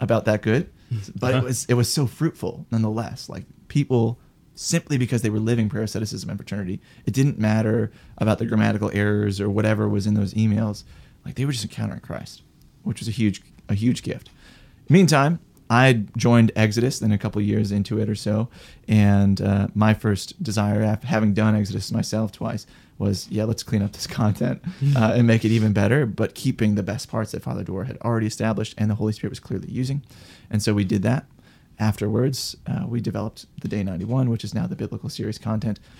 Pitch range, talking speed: 105-120 Hz, 200 wpm